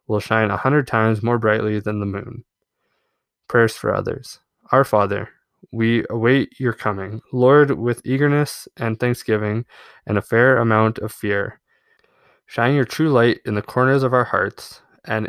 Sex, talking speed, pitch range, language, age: male, 160 wpm, 105-125 Hz, English, 20-39